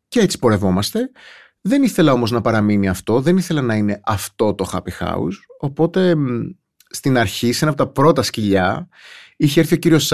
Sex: male